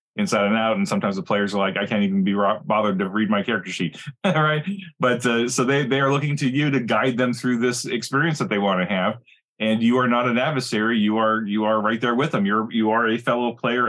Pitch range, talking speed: 105-140 Hz, 265 wpm